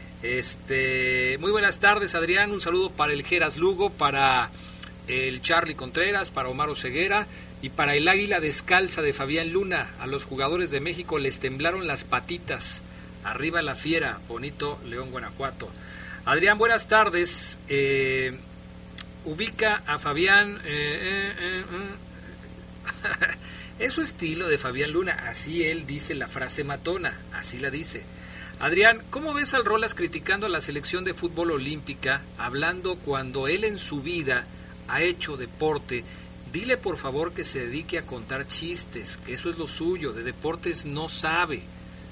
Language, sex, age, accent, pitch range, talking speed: Spanish, male, 40-59, Mexican, 130-180 Hz, 150 wpm